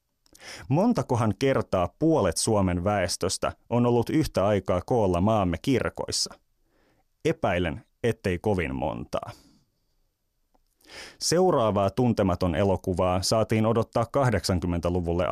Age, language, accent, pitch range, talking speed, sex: 30-49, Finnish, native, 90-115 Hz, 85 wpm, male